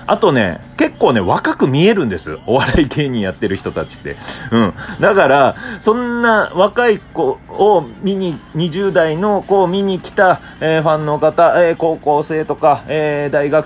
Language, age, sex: Japanese, 30-49, male